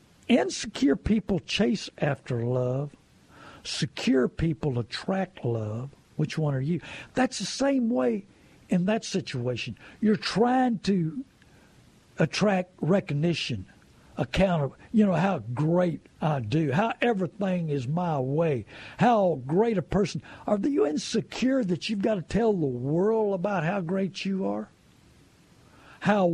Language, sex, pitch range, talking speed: English, male, 160-225 Hz, 130 wpm